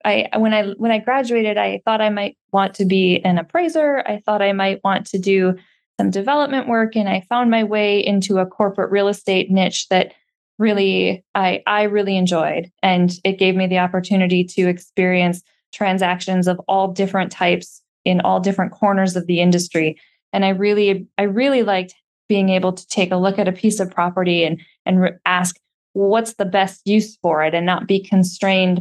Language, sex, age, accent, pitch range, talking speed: English, female, 10-29, American, 180-200 Hz, 195 wpm